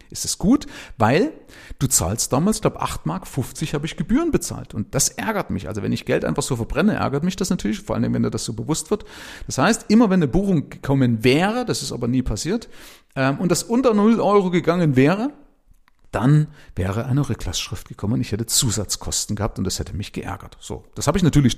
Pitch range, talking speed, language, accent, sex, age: 110-165 Hz, 215 wpm, German, German, male, 40-59